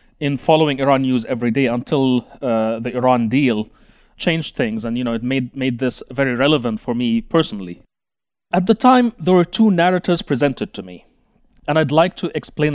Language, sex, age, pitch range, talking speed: English, male, 30-49, 125-155 Hz, 190 wpm